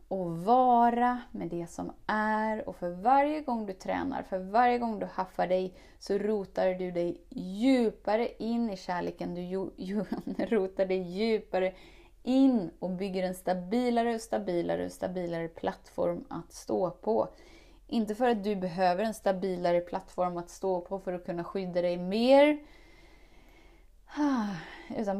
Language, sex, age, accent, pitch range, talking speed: Swedish, female, 20-39, native, 175-225 Hz, 150 wpm